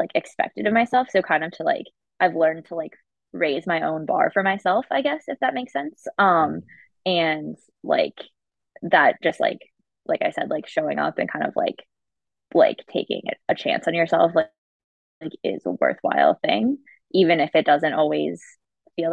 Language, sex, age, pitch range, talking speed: English, female, 20-39, 160-190 Hz, 185 wpm